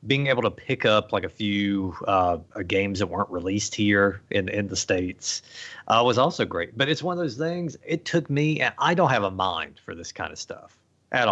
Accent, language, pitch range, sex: American, English, 100-130 Hz, male